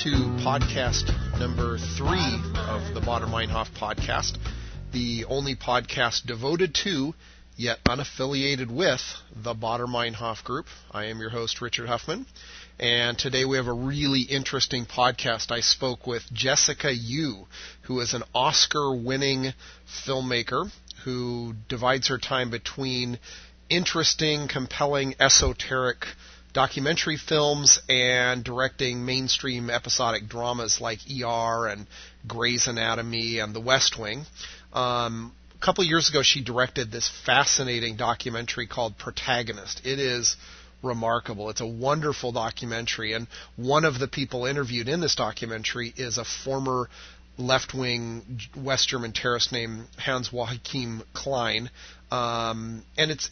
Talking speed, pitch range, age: 125 wpm, 115-135 Hz, 30-49